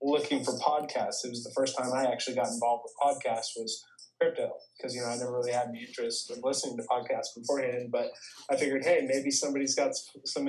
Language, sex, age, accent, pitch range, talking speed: English, male, 20-39, American, 125-140 Hz, 215 wpm